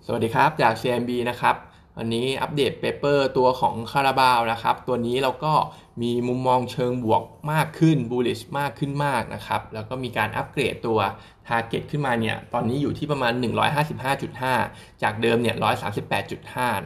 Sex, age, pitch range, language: male, 20-39, 115-140 Hz, Thai